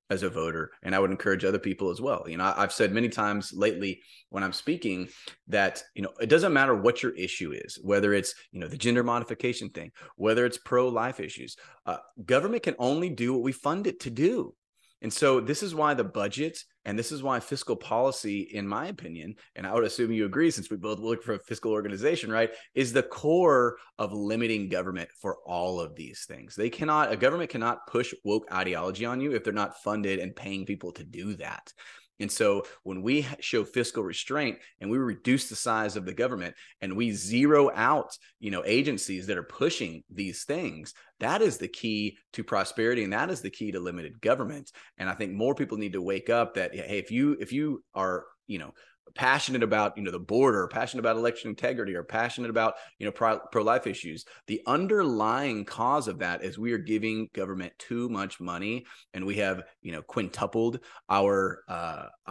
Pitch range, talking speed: 95-120 Hz, 205 wpm